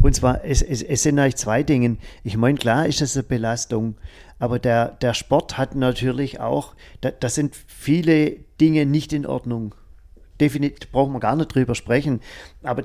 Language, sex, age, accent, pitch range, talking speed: German, male, 40-59, German, 110-130 Hz, 180 wpm